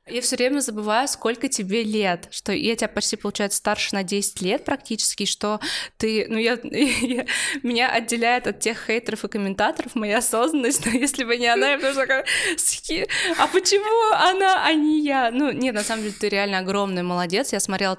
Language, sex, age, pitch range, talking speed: Russian, female, 20-39, 190-235 Hz, 185 wpm